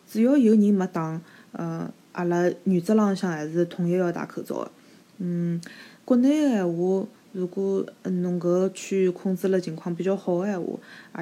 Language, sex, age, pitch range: Chinese, female, 20-39, 170-210 Hz